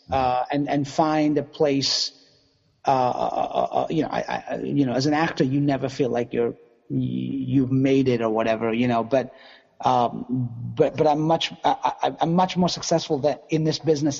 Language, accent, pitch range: English, American, 125-145 Hz